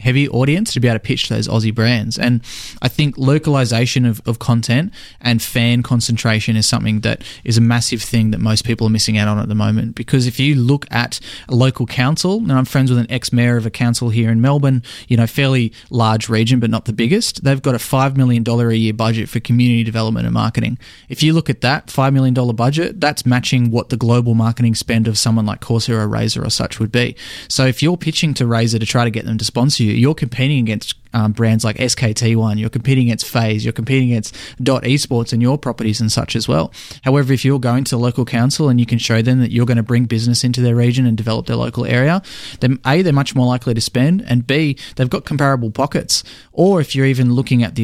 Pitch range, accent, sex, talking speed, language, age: 115-130 Hz, Australian, male, 235 wpm, English, 20-39